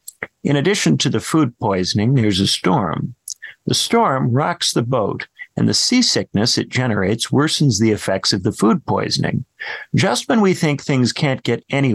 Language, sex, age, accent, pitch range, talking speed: English, male, 50-69, American, 105-140 Hz, 170 wpm